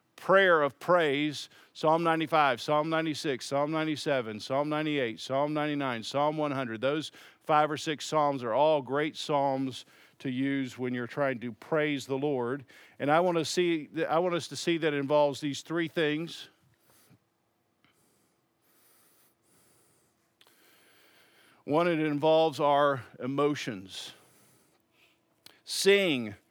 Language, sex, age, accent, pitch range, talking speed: English, male, 50-69, American, 140-180 Hz, 125 wpm